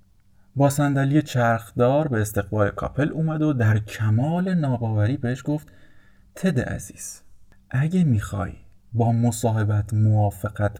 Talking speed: 110 wpm